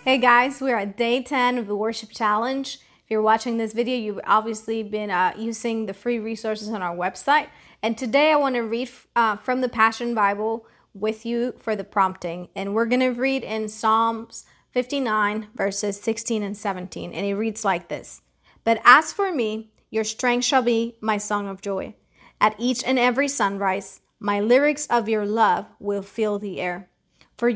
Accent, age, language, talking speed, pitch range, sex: American, 30-49, English, 185 wpm, 205-245 Hz, female